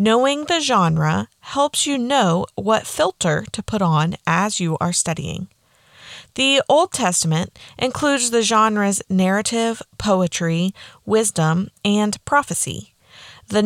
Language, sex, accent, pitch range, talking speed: English, female, American, 180-260 Hz, 120 wpm